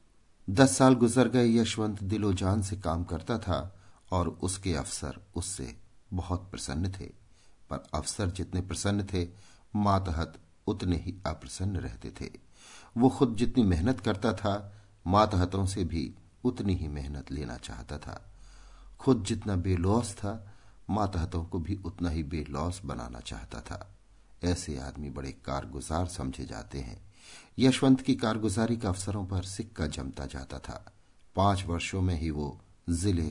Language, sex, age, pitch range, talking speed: Hindi, male, 50-69, 85-105 Hz, 140 wpm